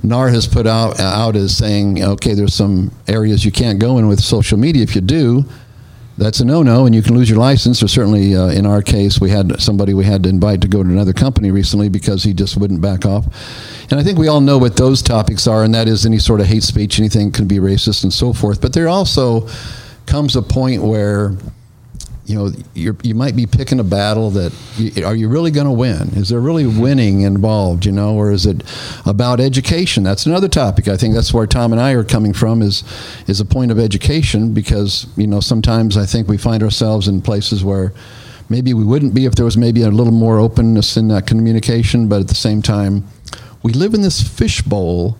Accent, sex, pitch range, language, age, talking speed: American, male, 100-120 Hz, English, 50-69, 230 wpm